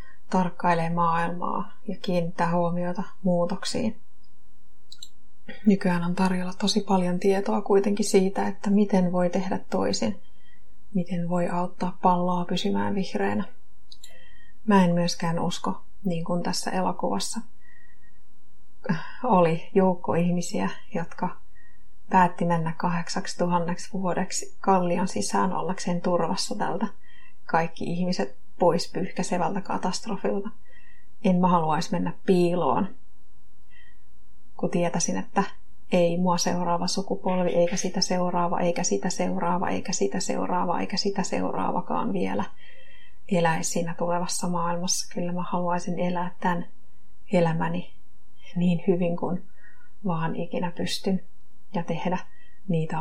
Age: 30-49